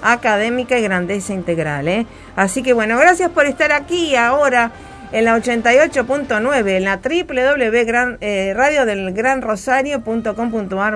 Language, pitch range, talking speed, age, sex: Spanish, 185-240 Hz, 105 wpm, 50-69, female